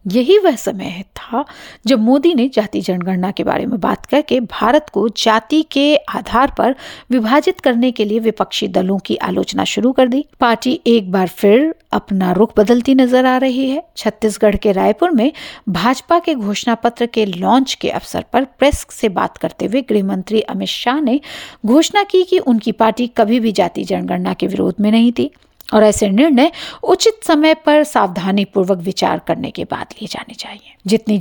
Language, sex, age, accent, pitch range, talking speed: English, female, 50-69, Indian, 210-285 Hz, 145 wpm